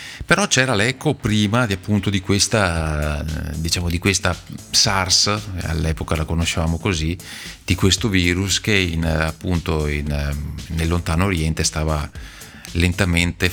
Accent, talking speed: native, 125 wpm